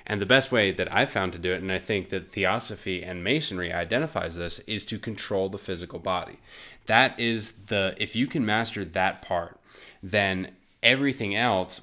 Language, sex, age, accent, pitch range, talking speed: English, male, 20-39, American, 90-110 Hz, 195 wpm